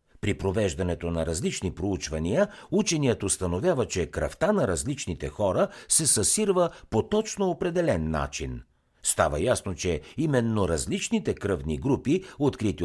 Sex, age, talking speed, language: male, 60-79, 120 wpm, Bulgarian